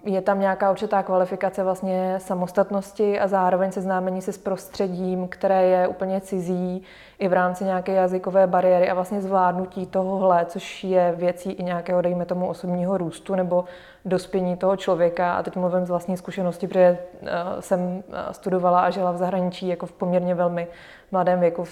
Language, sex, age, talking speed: Czech, female, 20-39, 165 wpm